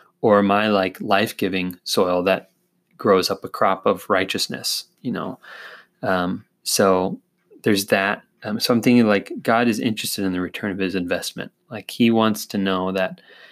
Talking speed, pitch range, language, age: 170 wpm, 100-125 Hz, English, 20-39